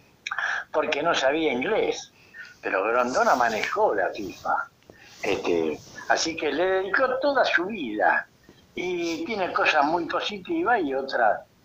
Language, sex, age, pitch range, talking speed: Spanish, male, 60-79, 125-185 Hz, 125 wpm